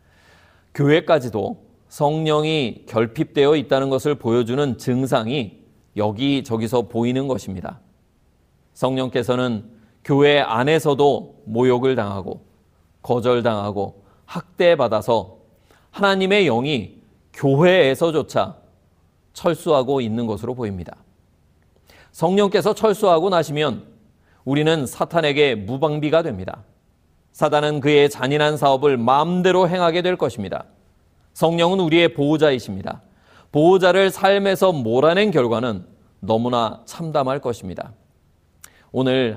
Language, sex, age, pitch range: Korean, male, 40-59, 105-150 Hz